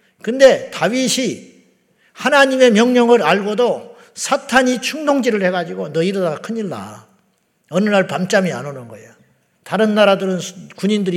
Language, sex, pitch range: Korean, male, 160-215 Hz